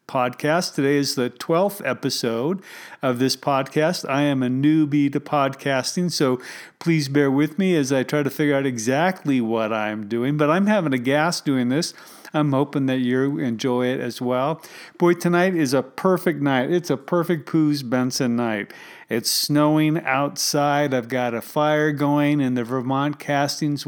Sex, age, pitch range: male, 40-59, 135-160 Hz